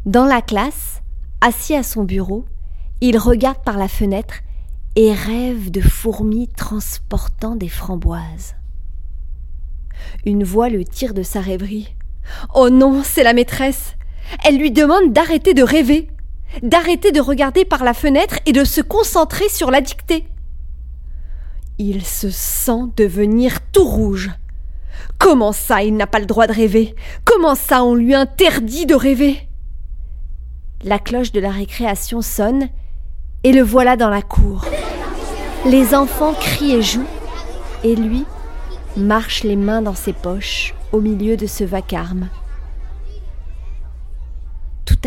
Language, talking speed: French, 135 wpm